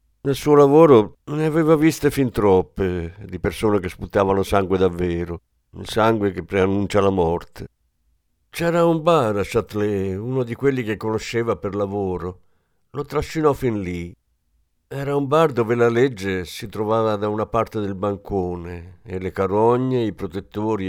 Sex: male